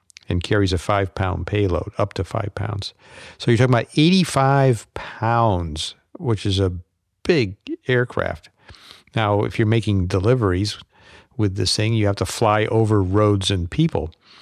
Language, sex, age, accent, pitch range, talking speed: English, male, 50-69, American, 95-125 Hz, 150 wpm